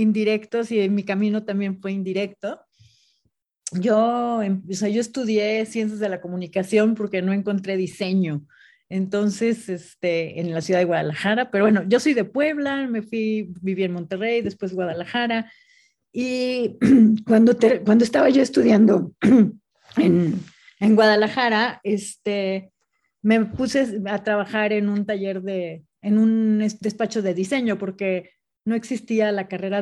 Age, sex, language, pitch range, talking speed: 40-59, female, Spanish, 185-225 Hz, 140 wpm